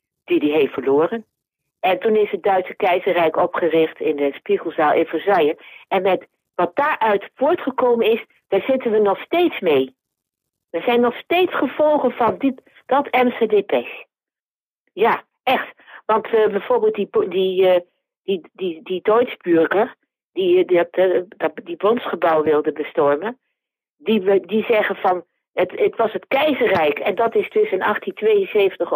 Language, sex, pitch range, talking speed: Dutch, female, 180-270 Hz, 150 wpm